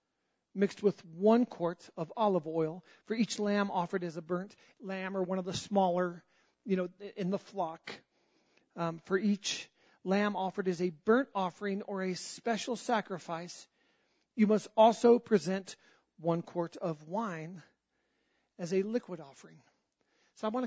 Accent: American